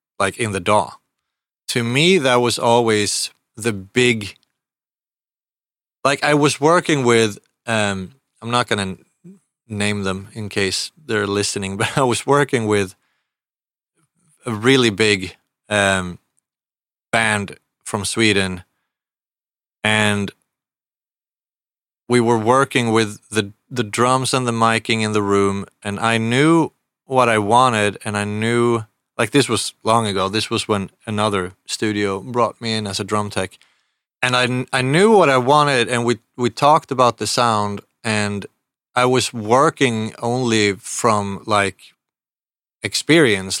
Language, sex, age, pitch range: English, male, 30-49, 100-120 Hz